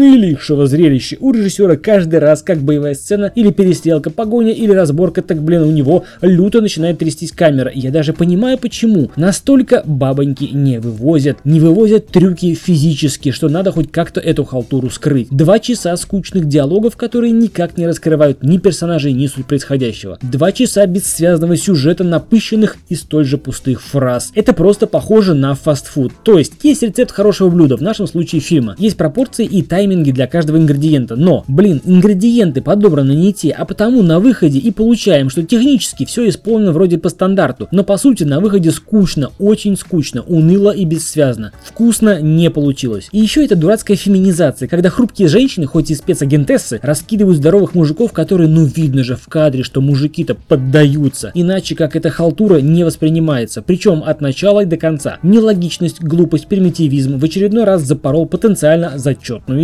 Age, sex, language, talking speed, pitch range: 20-39, male, Russian, 165 wpm, 150-200 Hz